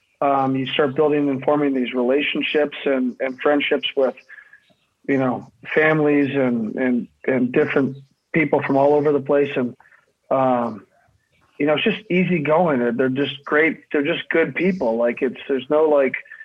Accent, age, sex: American, 20-39, male